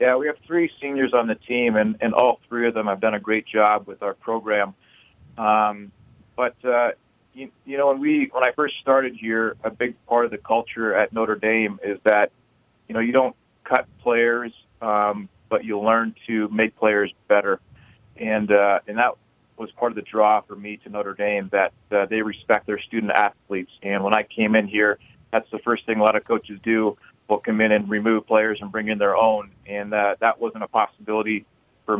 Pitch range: 105-115 Hz